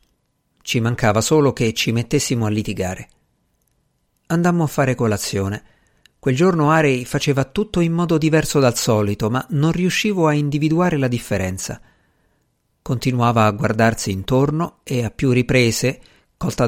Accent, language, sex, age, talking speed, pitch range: native, Italian, male, 50-69, 135 wpm, 110-145 Hz